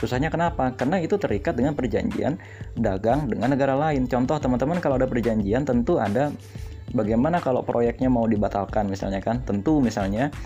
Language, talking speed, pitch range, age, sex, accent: Indonesian, 155 wpm, 105-125 Hz, 20-39, male, native